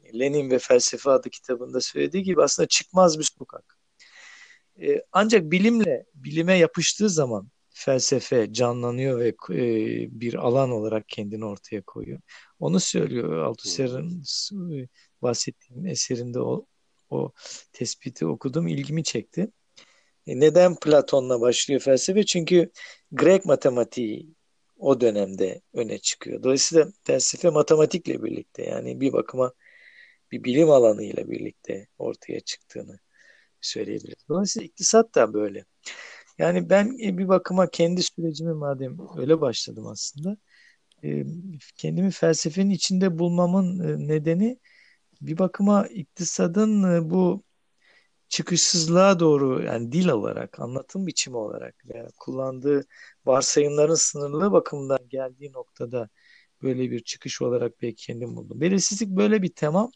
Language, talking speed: Turkish, 110 wpm